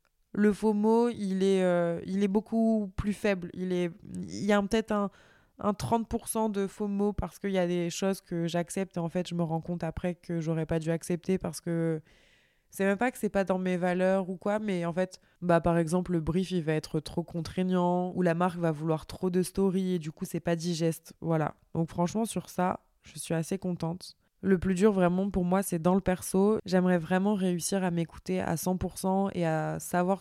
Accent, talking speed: French, 220 wpm